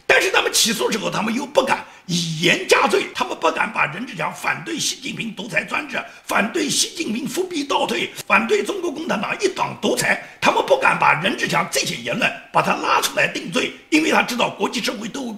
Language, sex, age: Chinese, male, 50-69